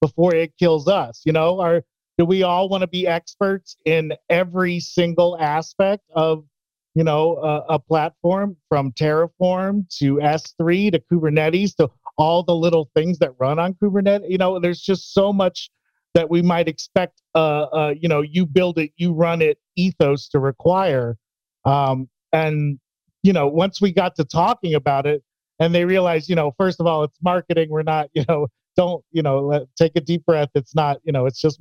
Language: English